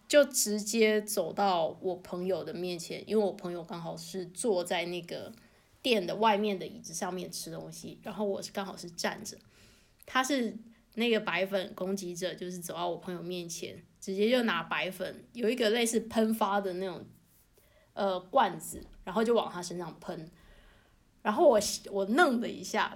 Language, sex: Chinese, female